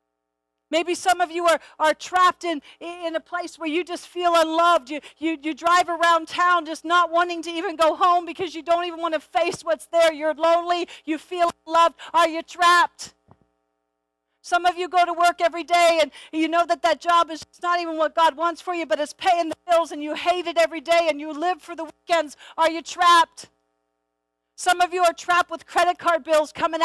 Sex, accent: female, American